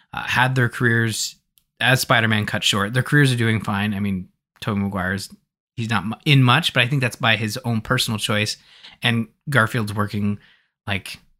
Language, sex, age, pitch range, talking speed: English, male, 20-39, 105-135 Hz, 185 wpm